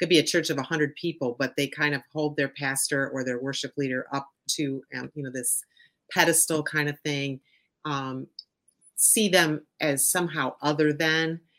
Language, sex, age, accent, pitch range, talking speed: English, female, 30-49, American, 140-160 Hz, 185 wpm